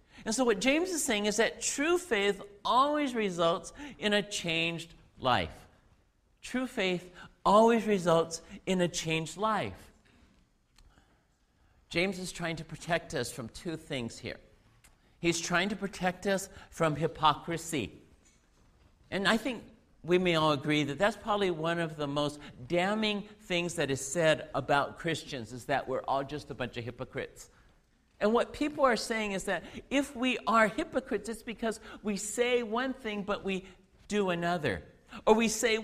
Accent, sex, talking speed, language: American, male, 160 wpm, English